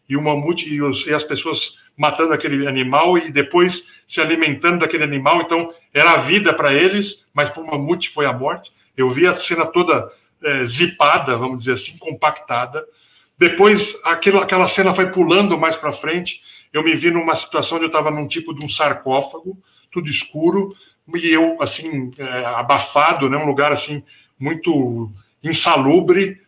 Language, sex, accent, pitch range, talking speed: Portuguese, male, Brazilian, 140-185 Hz, 170 wpm